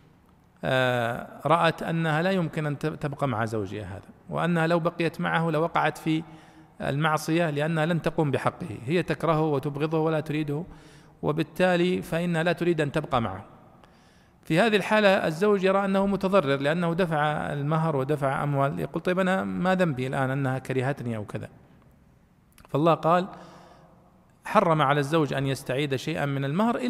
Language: Arabic